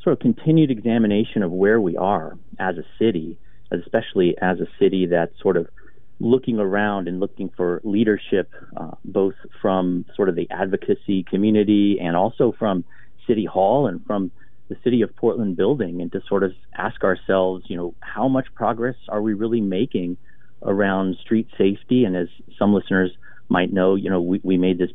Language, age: English, 40-59